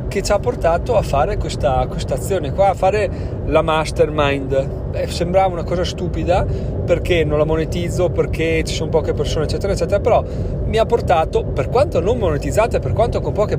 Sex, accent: male, native